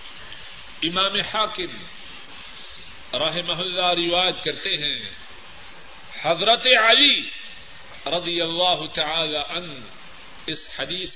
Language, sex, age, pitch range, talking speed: Urdu, male, 50-69, 155-205 Hz, 80 wpm